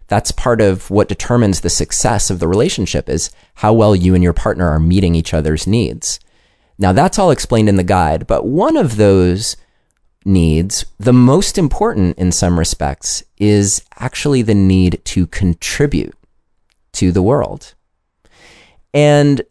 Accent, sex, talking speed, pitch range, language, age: American, male, 155 wpm, 85-120 Hz, English, 30-49